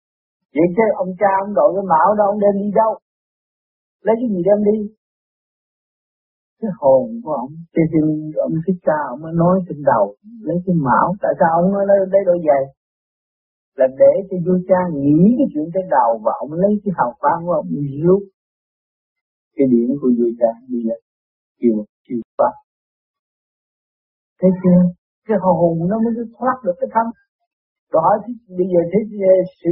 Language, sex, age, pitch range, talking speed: Vietnamese, male, 50-69, 155-225 Hz, 175 wpm